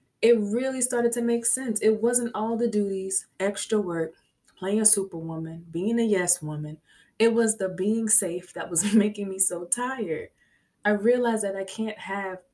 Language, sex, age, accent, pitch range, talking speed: English, female, 20-39, American, 175-220 Hz, 175 wpm